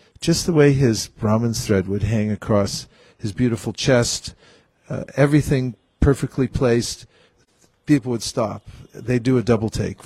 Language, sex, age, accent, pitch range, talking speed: English, male, 50-69, American, 110-140 Hz, 145 wpm